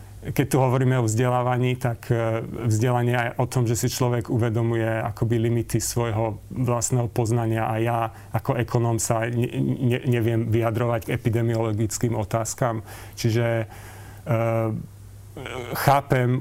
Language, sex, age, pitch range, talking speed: Slovak, male, 40-59, 115-125 Hz, 110 wpm